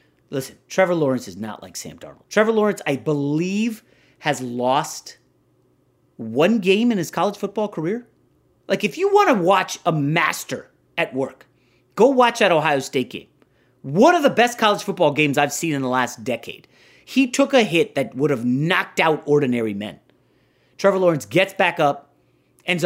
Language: English